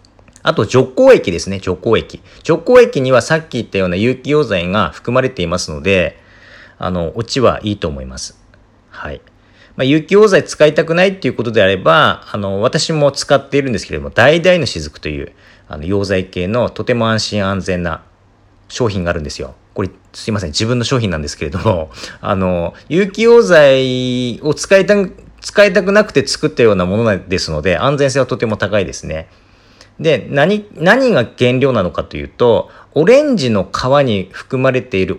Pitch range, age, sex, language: 95-140 Hz, 40-59, male, Japanese